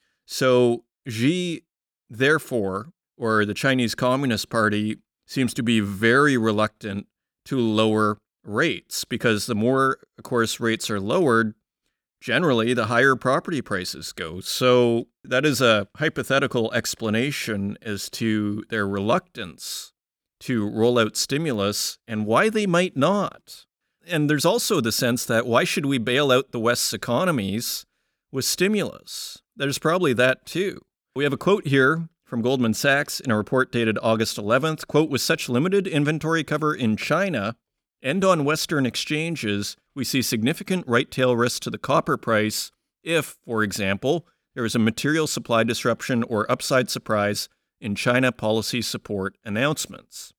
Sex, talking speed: male, 145 wpm